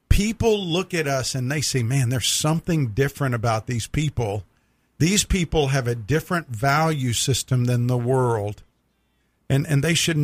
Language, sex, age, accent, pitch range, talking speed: English, male, 50-69, American, 120-145 Hz, 165 wpm